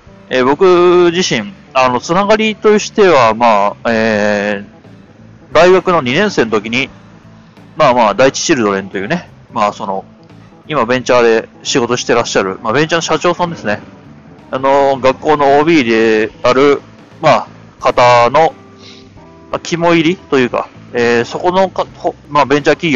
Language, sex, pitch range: Japanese, male, 115-170 Hz